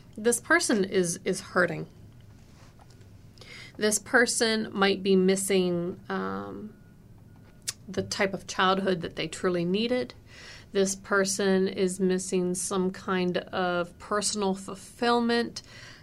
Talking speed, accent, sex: 105 wpm, American, female